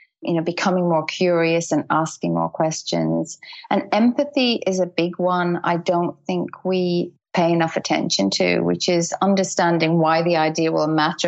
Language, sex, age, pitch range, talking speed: English, female, 30-49, 160-185 Hz, 165 wpm